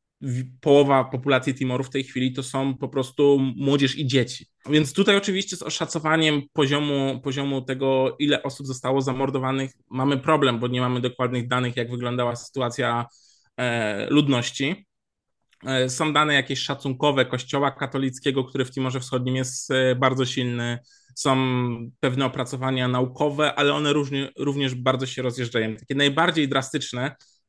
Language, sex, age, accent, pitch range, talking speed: Polish, male, 20-39, native, 130-145 Hz, 135 wpm